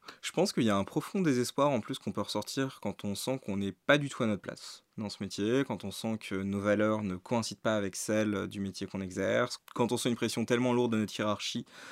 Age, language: 20-39, French